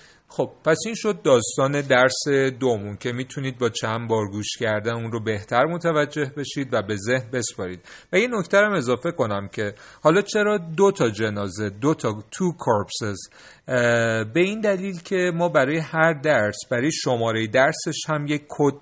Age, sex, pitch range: 40-59, male, 115-155 Hz